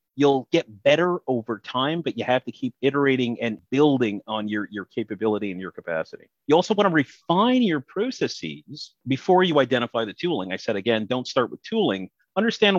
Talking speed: 190 wpm